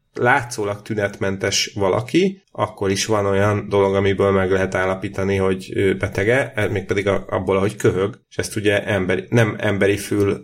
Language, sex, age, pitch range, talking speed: Hungarian, male, 30-49, 95-110 Hz, 145 wpm